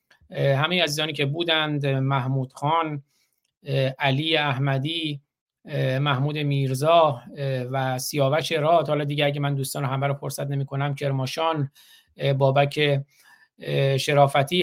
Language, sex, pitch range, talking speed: Persian, male, 140-160 Hz, 110 wpm